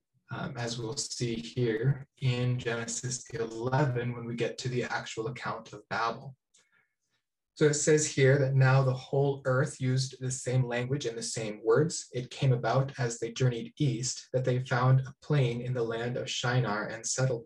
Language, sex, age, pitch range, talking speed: English, male, 20-39, 115-130 Hz, 180 wpm